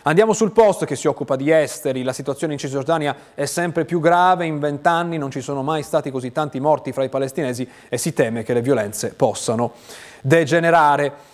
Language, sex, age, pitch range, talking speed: Italian, male, 30-49, 125-165 Hz, 195 wpm